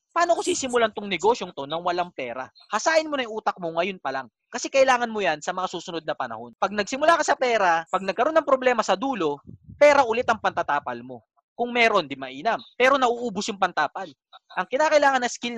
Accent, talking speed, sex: native, 210 wpm, male